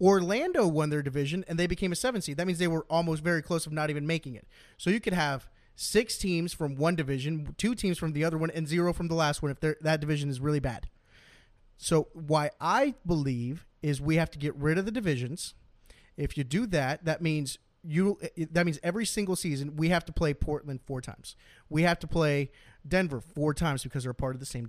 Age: 30-49